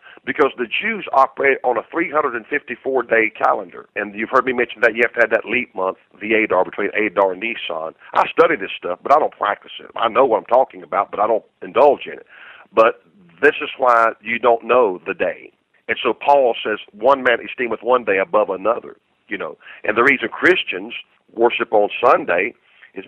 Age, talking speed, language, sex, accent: 50-69, 205 wpm, English, male, American